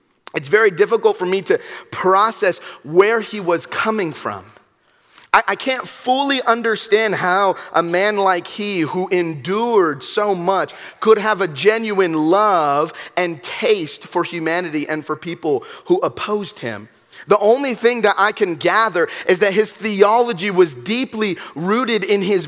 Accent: American